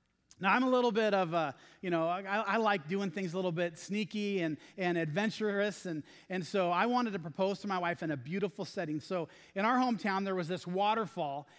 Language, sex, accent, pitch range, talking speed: English, male, American, 160-210 Hz, 225 wpm